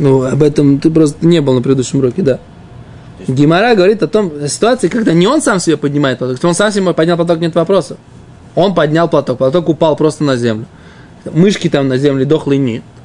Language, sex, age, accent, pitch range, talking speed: Russian, male, 20-39, native, 145-200 Hz, 200 wpm